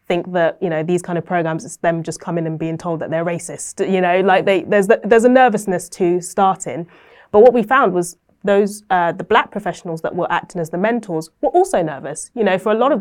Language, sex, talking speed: English, female, 250 wpm